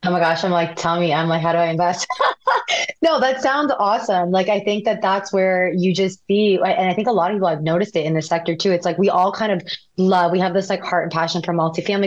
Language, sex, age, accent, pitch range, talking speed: English, female, 20-39, American, 165-195 Hz, 280 wpm